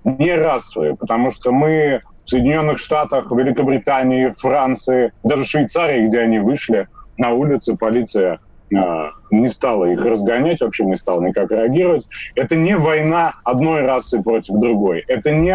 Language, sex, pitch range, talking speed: Russian, male, 120-165 Hz, 145 wpm